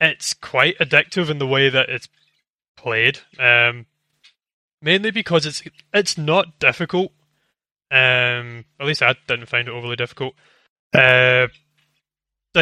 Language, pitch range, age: English, 125-150 Hz, 20-39